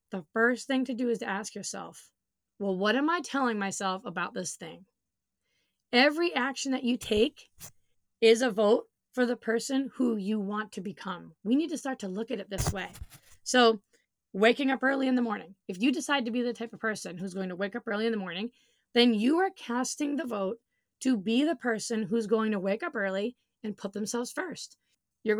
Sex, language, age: female, English, 20-39